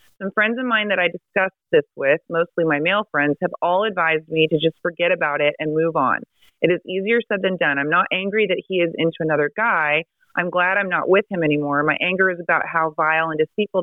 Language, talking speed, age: English, 240 wpm, 30-49